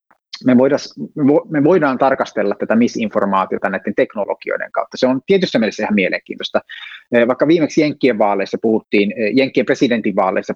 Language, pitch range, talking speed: Finnish, 105-135 Hz, 130 wpm